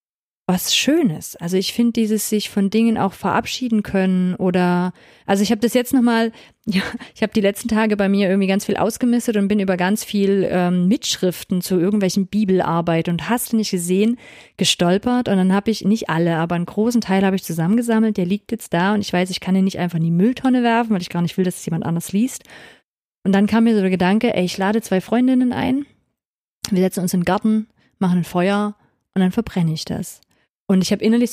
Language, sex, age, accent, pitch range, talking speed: German, female, 30-49, German, 185-225 Hz, 220 wpm